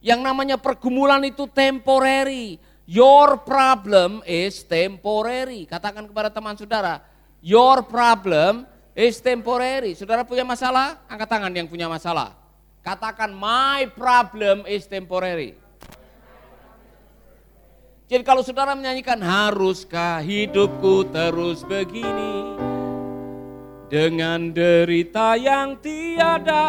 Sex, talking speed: male, 95 wpm